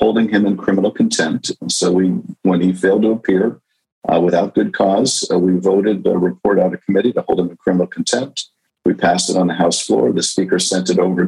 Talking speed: 220 wpm